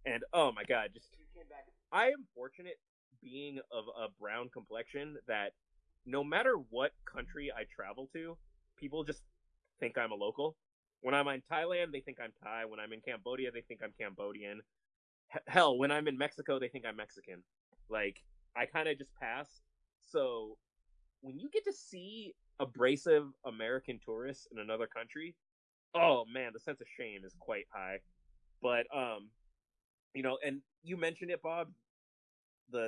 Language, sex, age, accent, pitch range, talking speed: English, male, 20-39, American, 115-165 Hz, 160 wpm